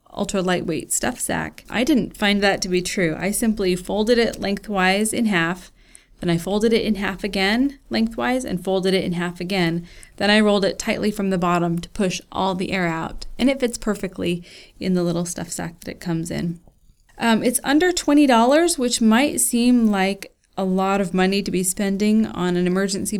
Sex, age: female, 30-49